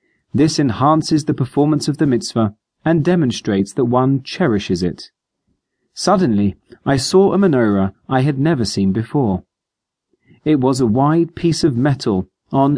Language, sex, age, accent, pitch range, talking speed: English, male, 30-49, British, 110-150 Hz, 145 wpm